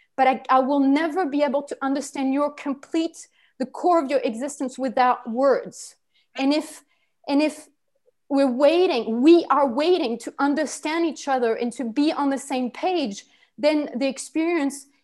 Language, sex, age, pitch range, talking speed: English, female, 30-49, 250-295 Hz, 165 wpm